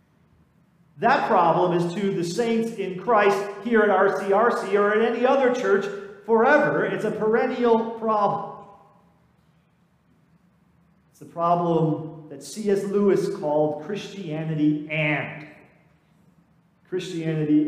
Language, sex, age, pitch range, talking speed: English, male, 40-59, 155-200 Hz, 105 wpm